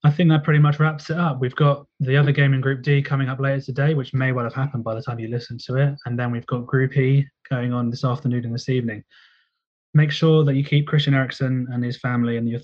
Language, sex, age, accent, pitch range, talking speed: English, male, 20-39, British, 115-140 Hz, 270 wpm